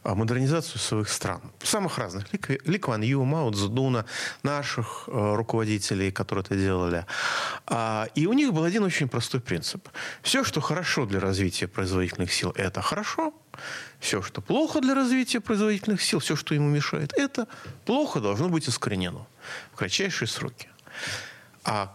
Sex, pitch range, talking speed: male, 105-160 Hz, 140 wpm